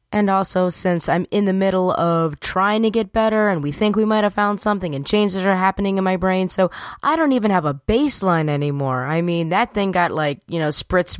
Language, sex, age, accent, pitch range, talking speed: English, female, 20-39, American, 165-220 Hz, 235 wpm